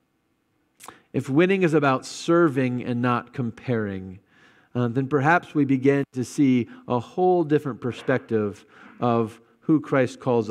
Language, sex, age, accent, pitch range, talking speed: English, male, 40-59, American, 125-150 Hz, 130 wpm